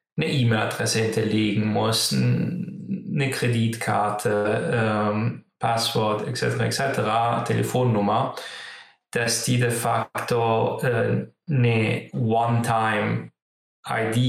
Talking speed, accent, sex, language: 75 wpm, German, male, German